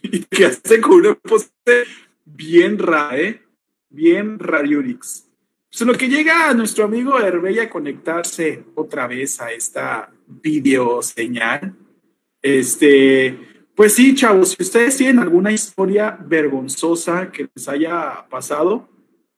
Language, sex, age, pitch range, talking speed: Spanish, male, 40-59, 170-260 Hz, 125 wpm